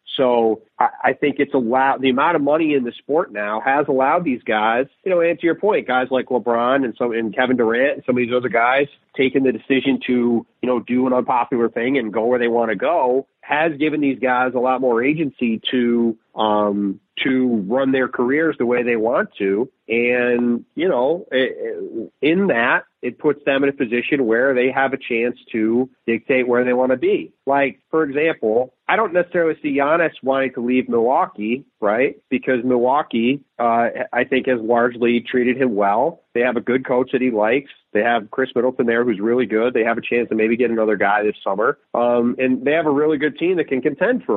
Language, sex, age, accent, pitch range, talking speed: English, male, 40-59, American, 115-135 Hz, 215 wpm